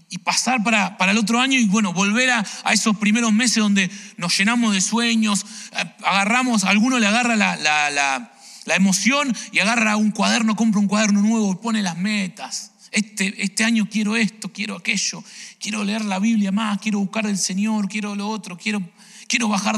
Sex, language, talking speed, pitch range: male, English, 195 wpm, 190-220 Hz